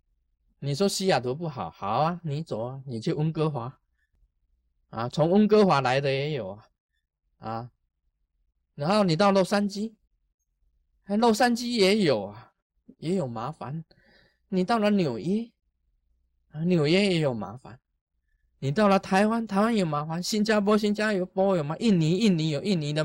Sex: male